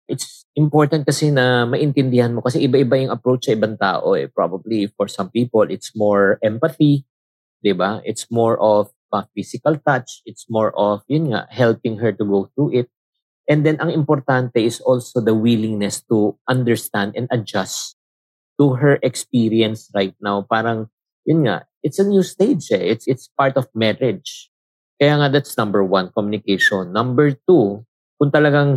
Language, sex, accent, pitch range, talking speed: Filipino, male, native, 100-130 Hz, 165 wpm